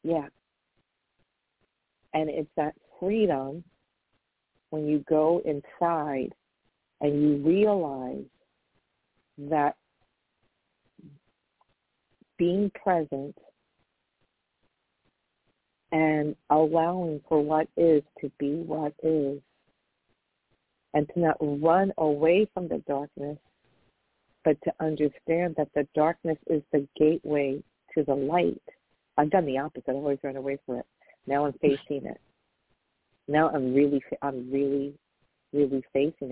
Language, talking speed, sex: English, 105 wpm, female